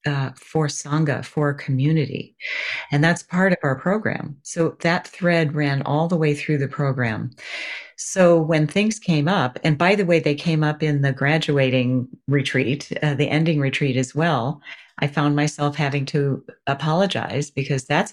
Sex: female